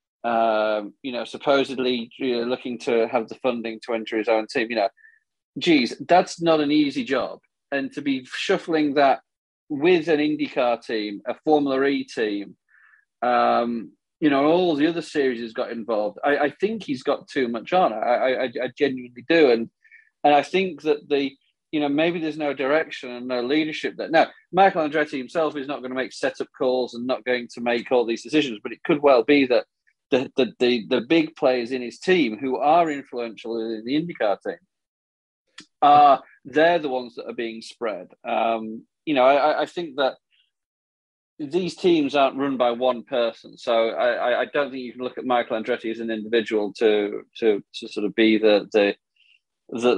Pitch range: 115-155 Hz